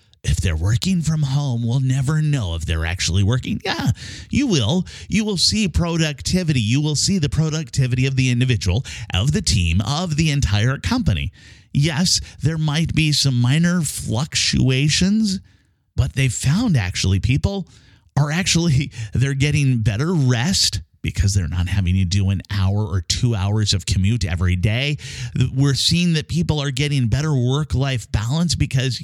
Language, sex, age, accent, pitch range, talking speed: English, male, 30-49, American, 105-150 Hz, 160 wpm